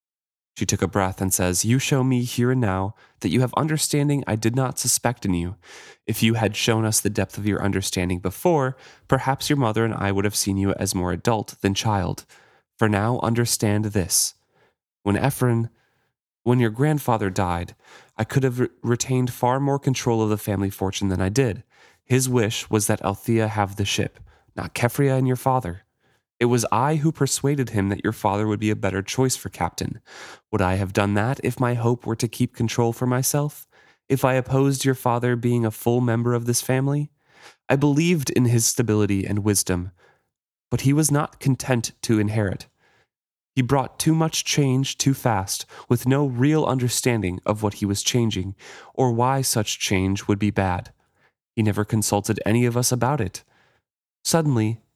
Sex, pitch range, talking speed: male, 100-130 Hz, 190 wpm